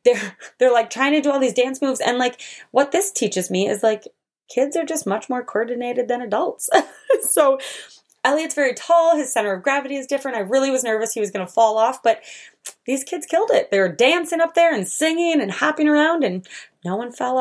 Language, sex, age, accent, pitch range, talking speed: English, female, 20-39, American, 215-320 Hz, 225 wpm